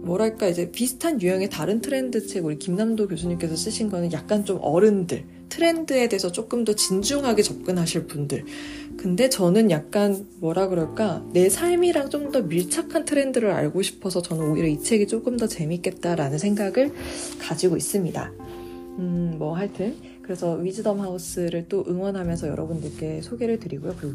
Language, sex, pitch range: Korean, female, 160-225 Hz